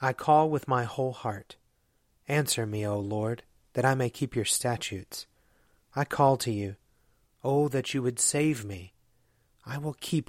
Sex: male